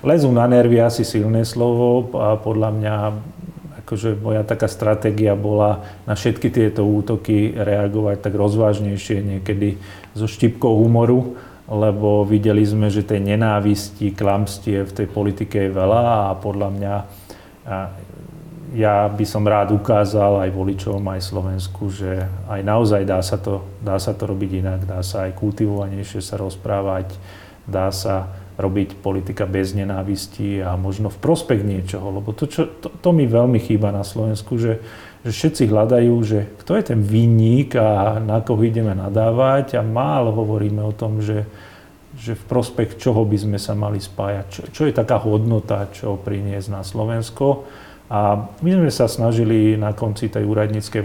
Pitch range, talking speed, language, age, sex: 100-115 Hz, 160 wpm, Slovak, 40-59, male